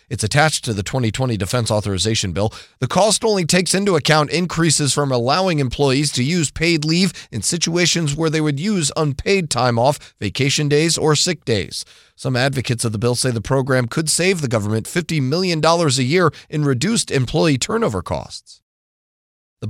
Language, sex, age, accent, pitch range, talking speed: English, male, 30-49, American, 130-170 Hz, 175 wpm